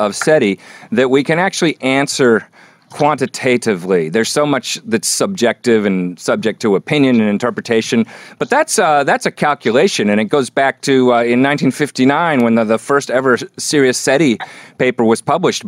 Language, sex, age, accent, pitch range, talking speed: English, male, 40-59, American, 105-130 Hz, 165 wpm